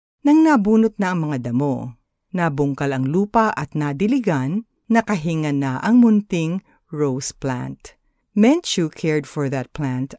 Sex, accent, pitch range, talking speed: female, native, 145-225 Hz, 130 wpm